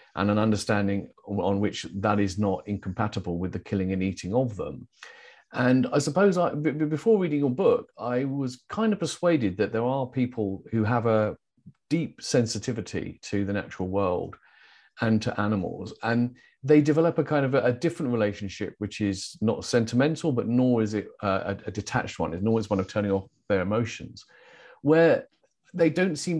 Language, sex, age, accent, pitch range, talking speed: English, male, 40-59, British, 100-140 Hz, 175 wpm